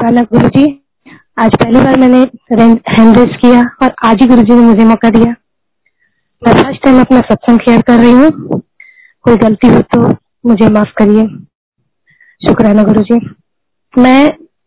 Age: 20-39